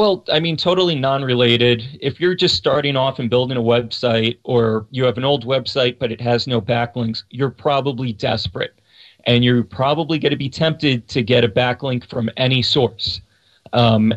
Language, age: English, 40-59